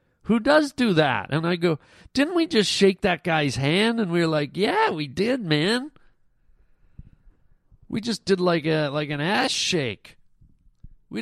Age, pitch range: 40-59, 130-175 Hz